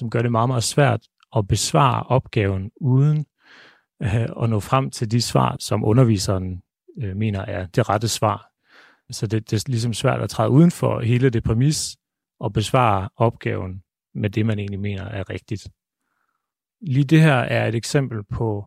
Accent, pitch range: native, 105-125 Hz